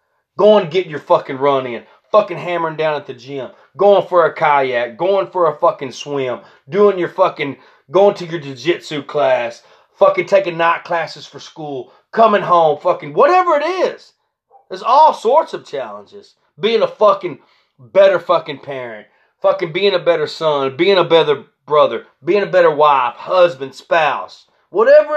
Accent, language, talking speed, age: American, English, 165 wpm, 30-49